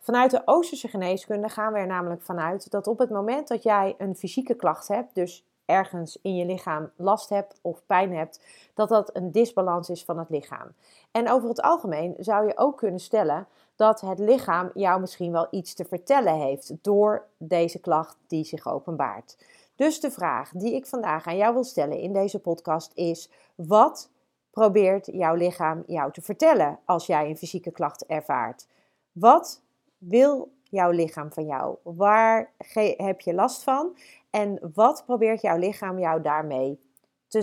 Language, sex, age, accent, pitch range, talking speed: Dutch, female, 40-59, Dutch, 170-215 Hz, 175 wpm